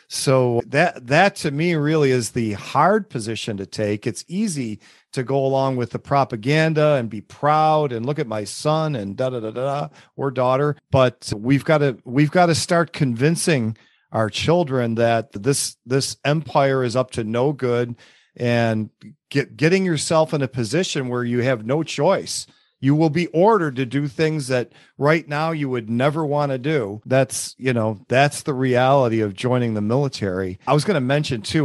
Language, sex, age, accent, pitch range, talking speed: English, male, 40-59, American, 115-145 Hz, 190 wpm